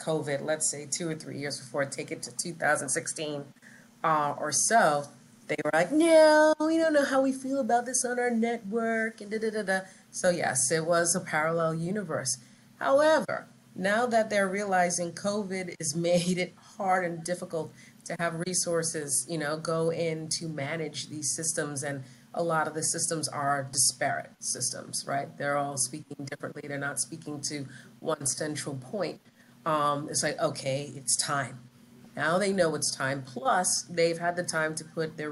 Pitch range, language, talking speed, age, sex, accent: 140-175 Hz, English, 180 wpm, 30-49, female, American